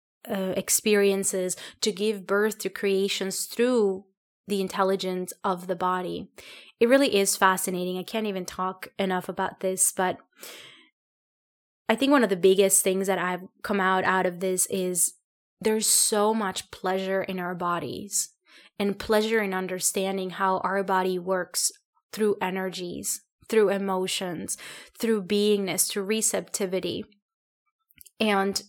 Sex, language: female, English